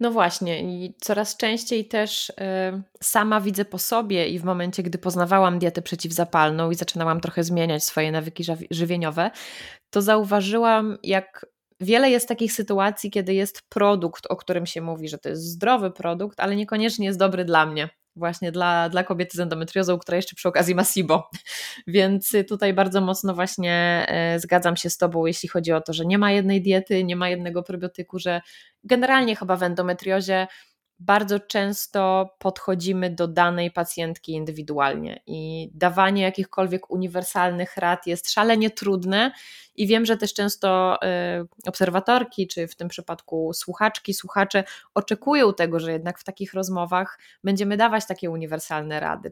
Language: Polish